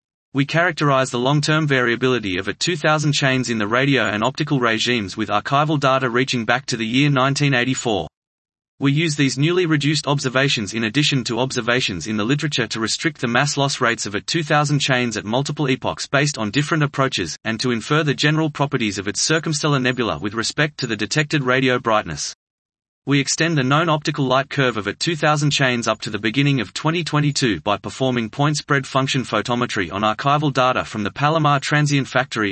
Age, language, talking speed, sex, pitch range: 30-49, English, 190 wpm, male, 120-145 Hz